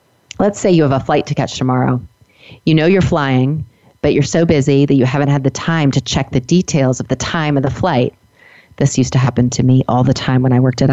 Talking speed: 255 wpm